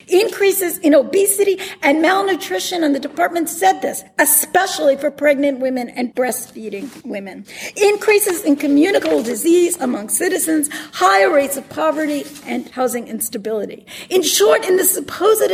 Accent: American